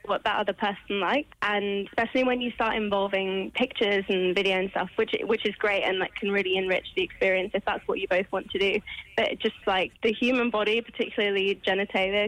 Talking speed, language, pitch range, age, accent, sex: 210 wpm, English, 195-225 Hz, 10-29, British, female